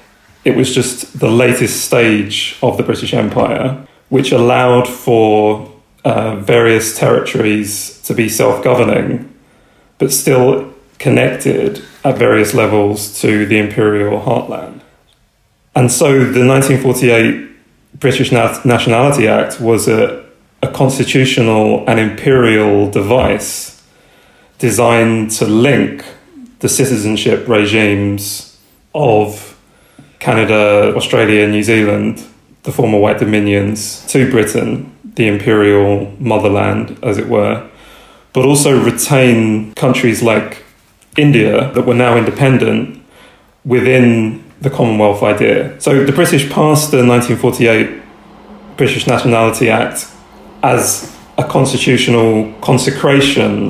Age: 30-49